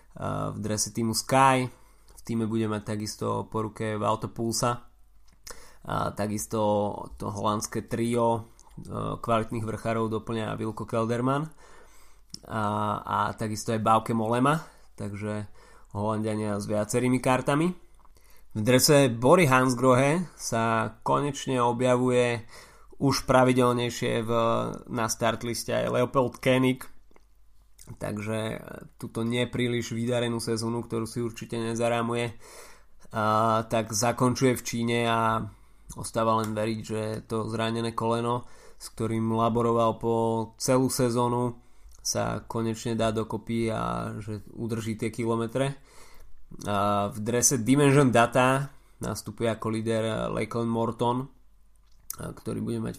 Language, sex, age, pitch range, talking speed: Slovak, male, 20-39, 110-120 Hz, 110 wpm